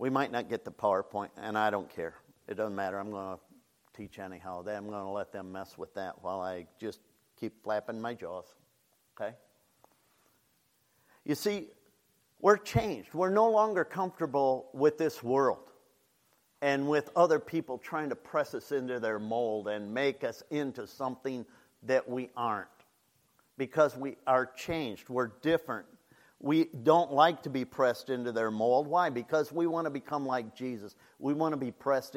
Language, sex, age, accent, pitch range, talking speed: English, male, 50-69, American, 120-155 Hz, 170 wpm